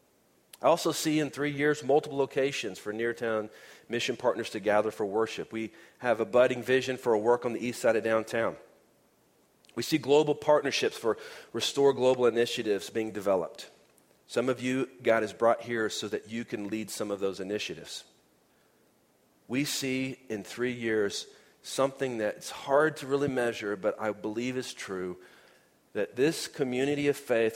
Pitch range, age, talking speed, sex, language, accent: 110-140 Hz, 40-59, 170 wpm, male, English, American